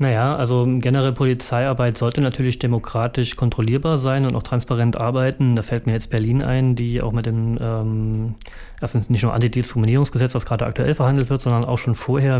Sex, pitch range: male, 115-130 Hz